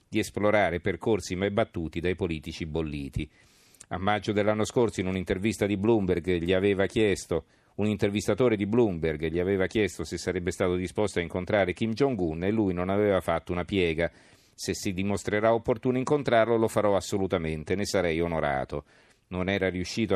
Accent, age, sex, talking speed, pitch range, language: native, 50-69, male, 165 wpm, 85-105 Hz, Italian